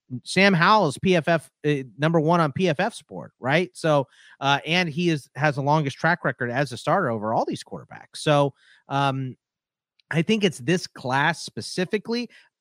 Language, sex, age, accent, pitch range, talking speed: English, male, 30-49, American, 125-170 Hz, 170 wpm